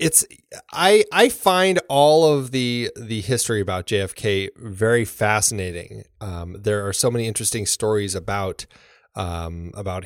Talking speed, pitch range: 135 wpm, 100-135 Hz